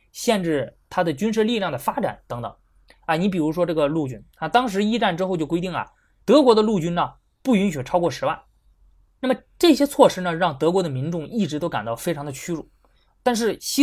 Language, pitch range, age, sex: Chinese, 145-215 Hz, 20-39, male